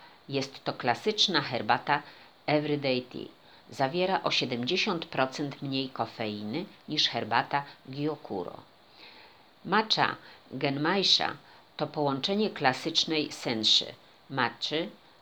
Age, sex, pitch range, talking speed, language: 50-69, female, 120-165 Hz, 85 wpm, Polish